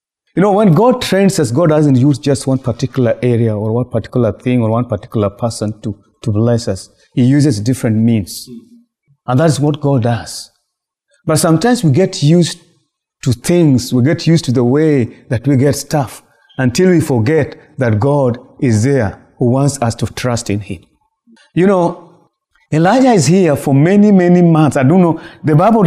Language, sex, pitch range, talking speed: English, male, 125-175 Hz, 185 wpm